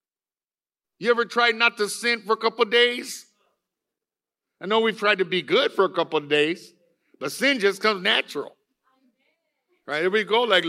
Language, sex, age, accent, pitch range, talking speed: English, male, 60-79, American, 185-235 Hz, 185 wpm